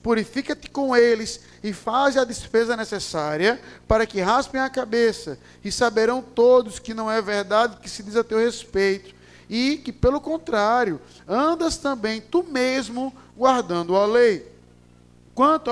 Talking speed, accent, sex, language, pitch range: 145 wpm, Brazilian, male, Portuguese, 190-245 Hz